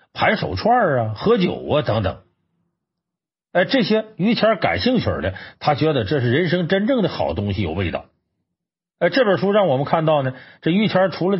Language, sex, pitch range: Chinese, male, 110-175 Hz